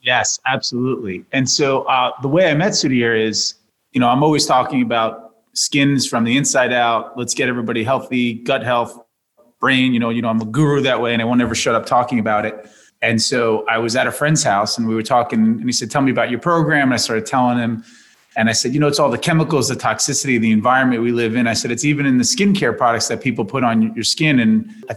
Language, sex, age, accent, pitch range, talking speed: English, male, 30-49, American, 110-130 Hz, 250 wpm